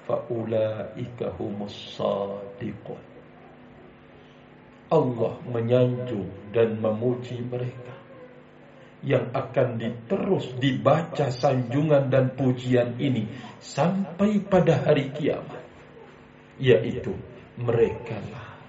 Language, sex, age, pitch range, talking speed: Indonesian, male, 50-69, 120-165 Hz, 70 wpm